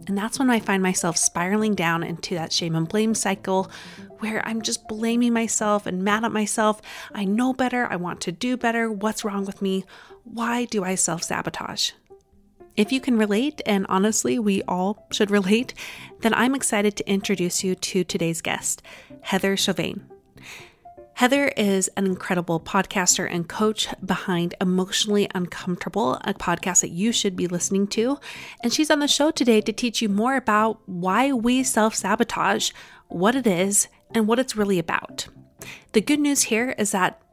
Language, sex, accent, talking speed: English, female, American, 170 wpm